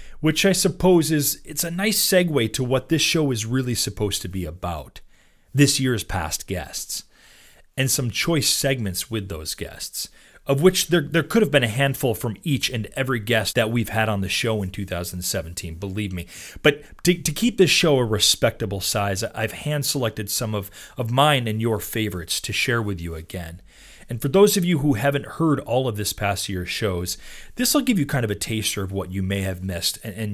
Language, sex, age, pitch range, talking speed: English, male, 30-49, 95-140 Hz, 210 wpm